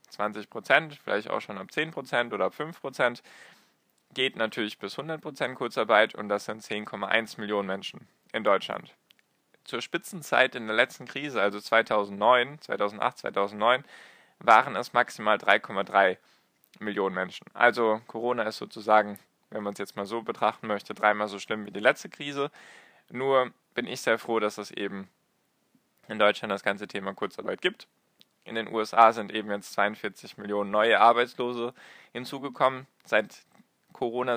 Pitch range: 105-120 Hz